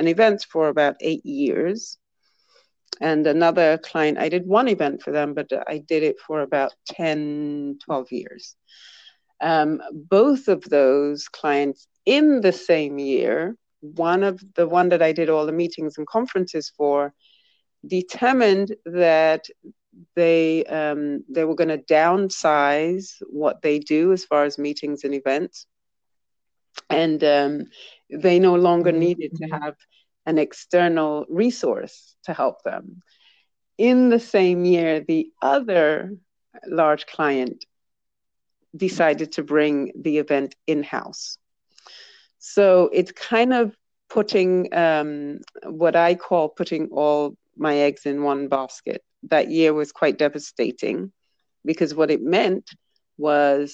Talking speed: 130 wpm